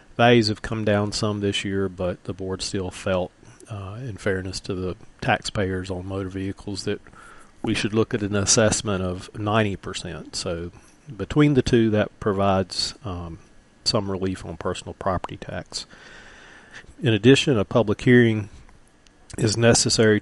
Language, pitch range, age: English, 95-110 Hz, 40-59